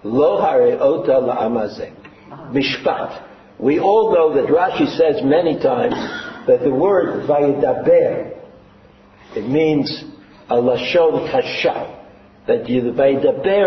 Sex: male